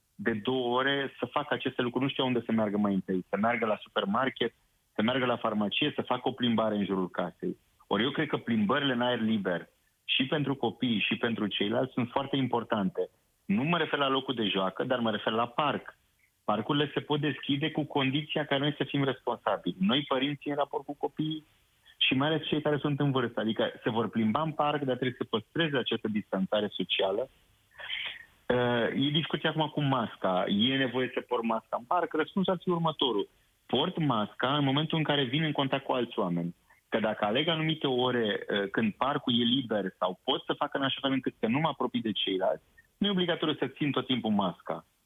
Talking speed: 205 wpm